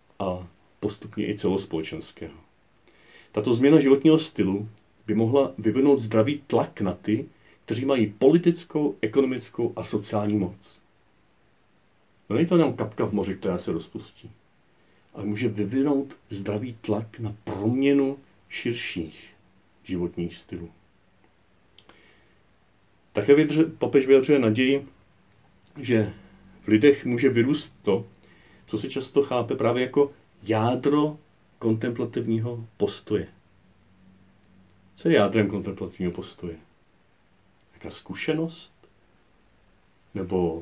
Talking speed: 100 wpm